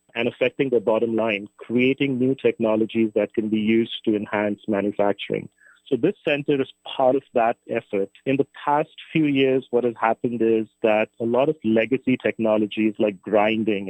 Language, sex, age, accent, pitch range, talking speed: English, male, 40-59, Indian, 105-120 Hz, 175 wpm